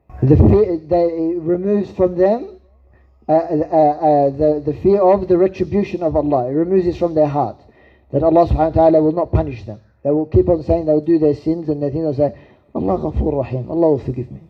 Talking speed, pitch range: 220 wpm, 145-170 Hz